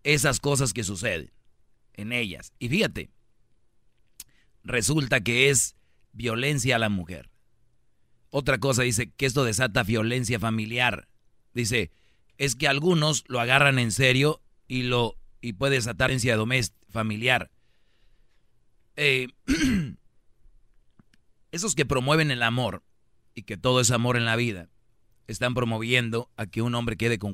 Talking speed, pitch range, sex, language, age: 135 wpm, 110-130 Hz, male, Spanish, 40-59